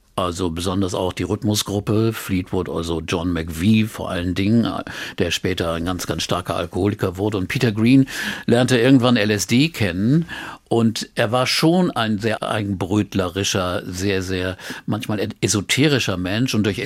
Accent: German